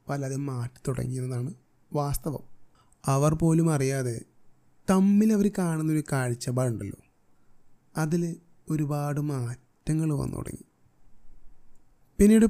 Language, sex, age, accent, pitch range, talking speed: Malayalam, male, 30-49, native, 135-170 Hz, 75 wpm